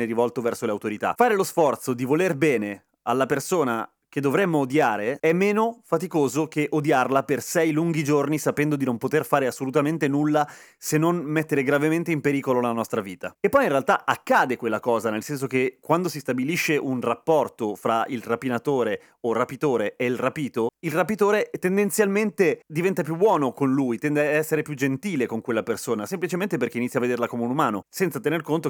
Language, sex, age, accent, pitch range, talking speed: Italian, male, 30-49, native, 120-165 Hz, 190 wpm